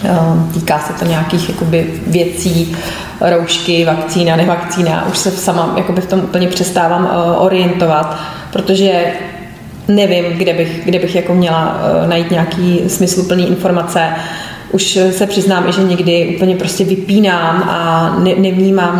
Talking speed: 140 wpm